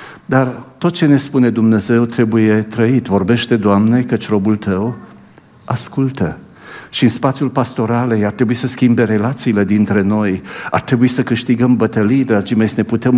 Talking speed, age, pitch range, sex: 160 wpm, 60-79, 100-130 Hz, male